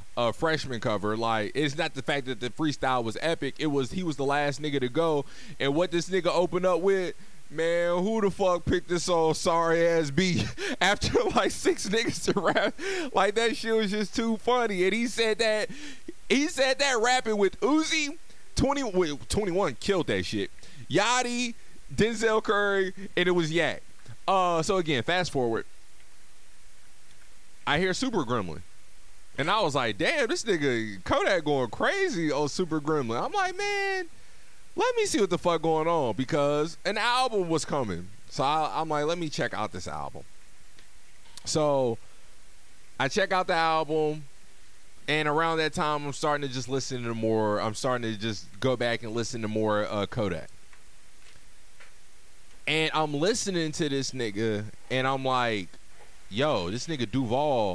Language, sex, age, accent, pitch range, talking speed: English, male, 20-39, American, 125-195 Hz, 170 wpm